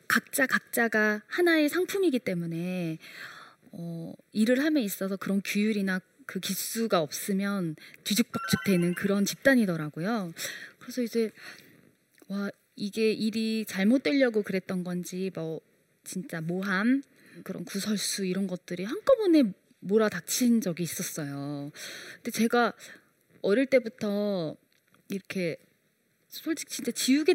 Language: Korean